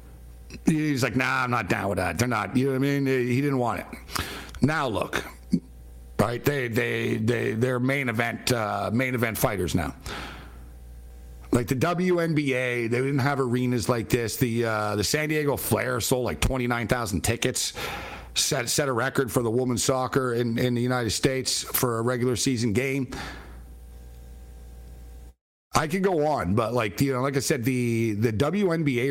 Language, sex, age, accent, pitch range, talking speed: English, male, 50-69, American, 90-135 Hz, 175 wpm